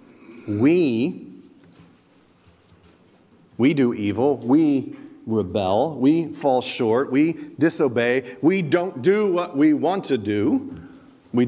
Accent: American